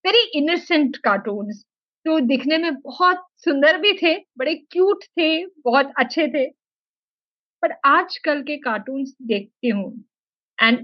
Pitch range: 240-335 Hz